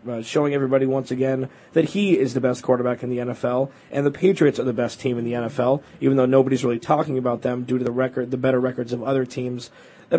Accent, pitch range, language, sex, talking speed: American, 130-150 Hz, English, male, 245 wpm